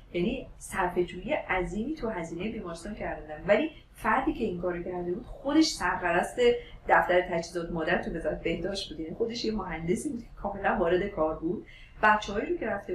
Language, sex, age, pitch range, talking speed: Persian, female, 40-59, 165-220 Hz, 160 wpm